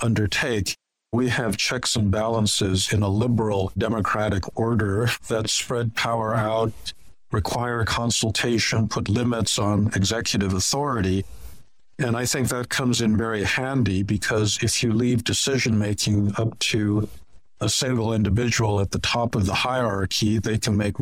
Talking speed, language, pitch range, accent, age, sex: 140 wpm, English, 100-115 Hz, American, 60-79, male